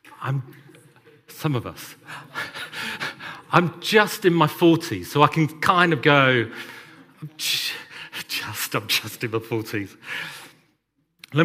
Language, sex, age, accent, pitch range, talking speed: English, male, 40-59, British, 115-155 Hz, 125 wpm